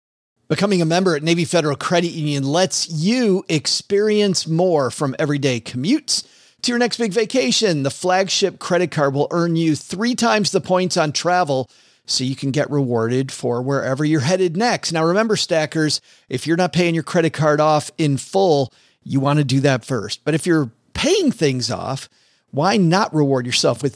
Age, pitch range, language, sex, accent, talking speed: 40-59, 140-180 Hz, English, male, American, 185 wpm